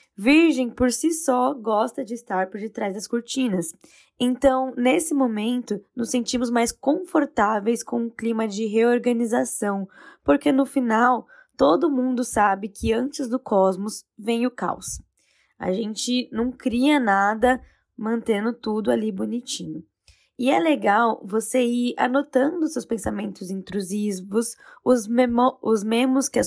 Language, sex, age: Portuguese, female, 10-29